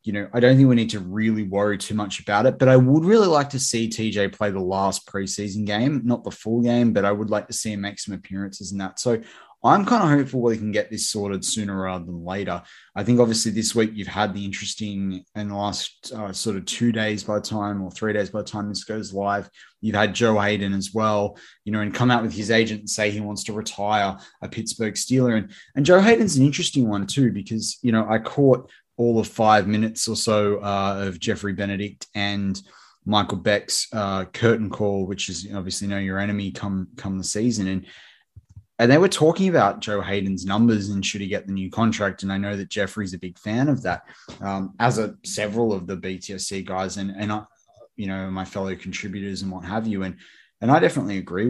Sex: male